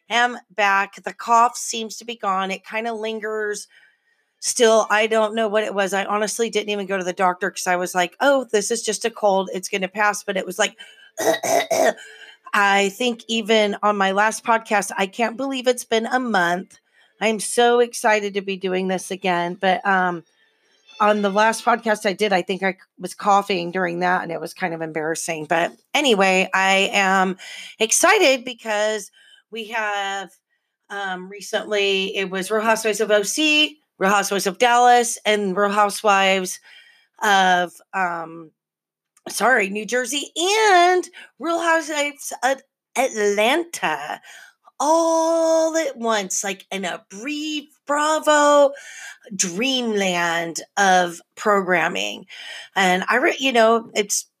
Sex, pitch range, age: female, 195-245 Hz, 30-49